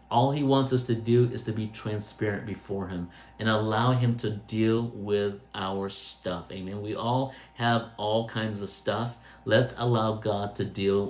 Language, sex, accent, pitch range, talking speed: English, male, American, 100-115 Hz, 180 wpm